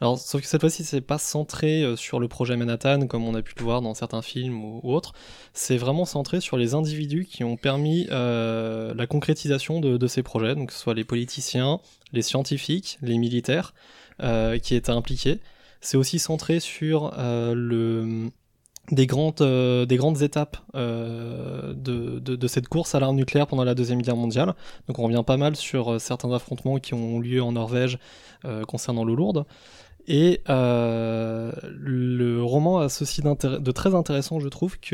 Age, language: 20-39, French